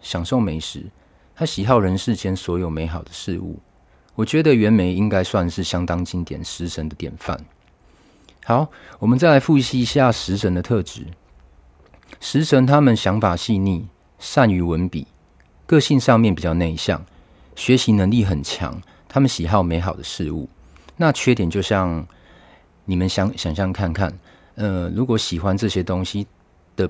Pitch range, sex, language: 85-110 Hz, male, Chinese